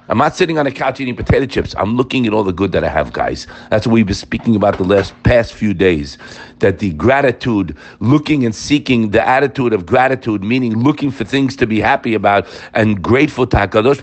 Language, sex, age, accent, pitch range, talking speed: English, male, 50-69, American, 105-155 Hz, 225 wpm